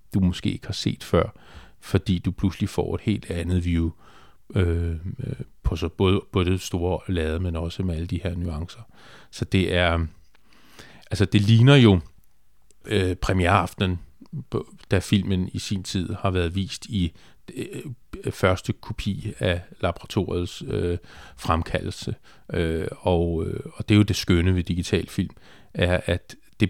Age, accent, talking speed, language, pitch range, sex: 40-59, native, 155 wpm, Danish, 90-105 Hz, male